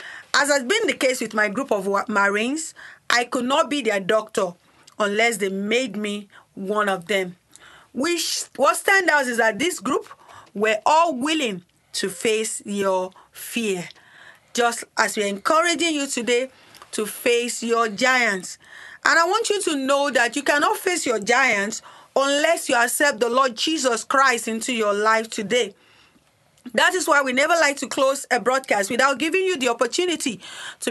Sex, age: female, 40-59